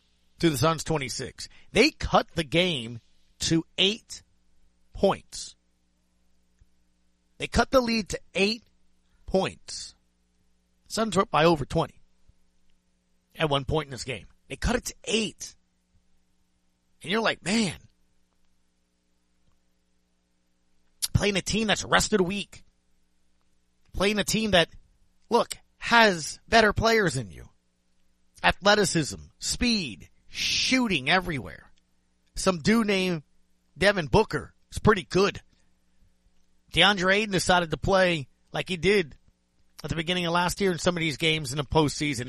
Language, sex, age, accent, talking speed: English, male, 40-59, American, 130 wpm